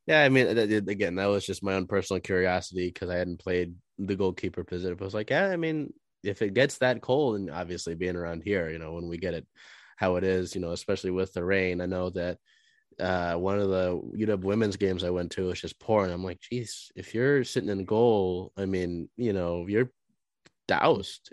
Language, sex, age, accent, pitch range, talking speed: English, male, 20-39, American, 90-105 Hz, 220 wpm